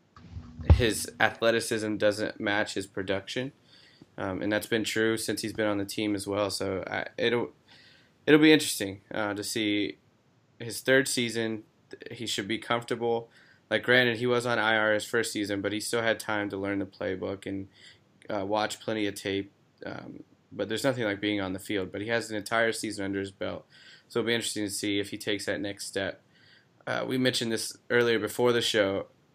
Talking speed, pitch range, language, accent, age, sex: 195 wpm, 100-115 Hz, English, American, 20-39, male